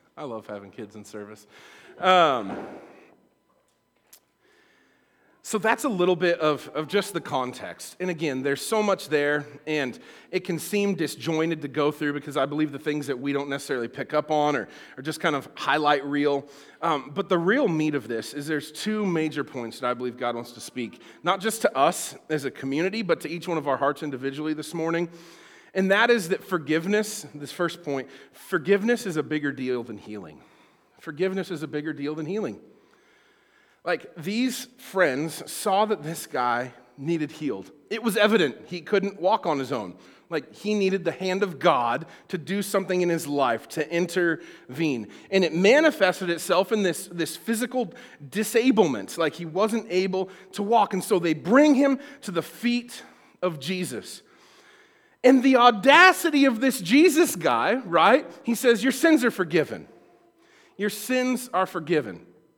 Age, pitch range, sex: 40-59, 150-215 Hz, male